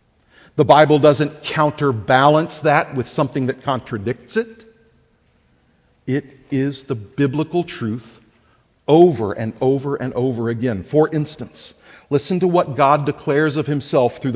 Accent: American